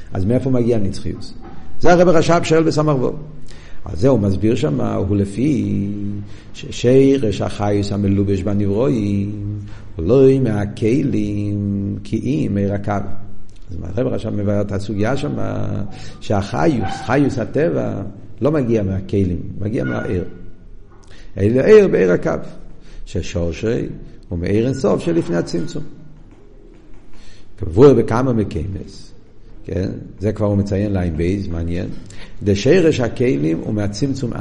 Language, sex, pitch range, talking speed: Hebrew, male, 100-130 Hz, 115 wpm